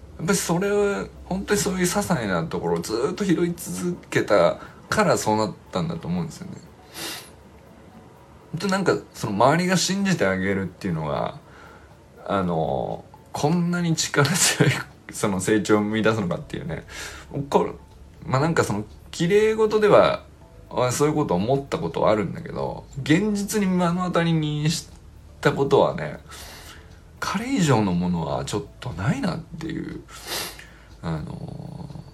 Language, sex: Japanese, male